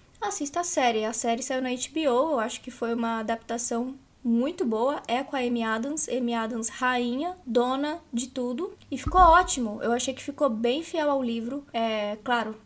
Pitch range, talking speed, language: 235-280 Hz, 190 wpm, Portuguese